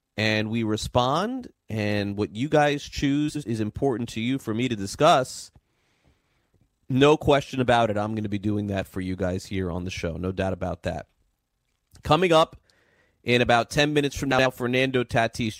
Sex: male